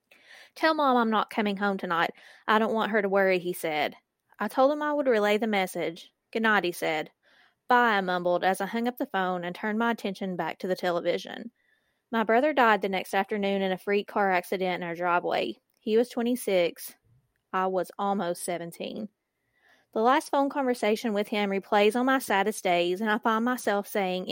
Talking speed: 200 wpm